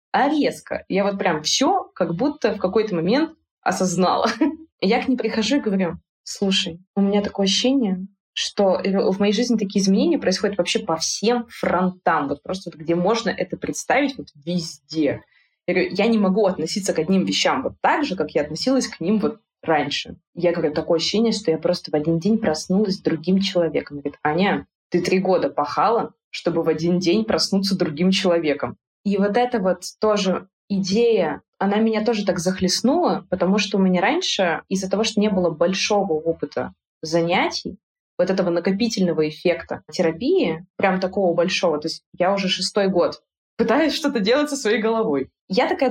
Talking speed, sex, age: 180 wpm, female, 20-39